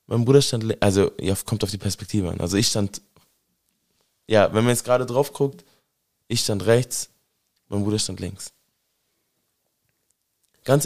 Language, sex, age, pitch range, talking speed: German, male, 20-39, 100-130 Hz, 160 wpm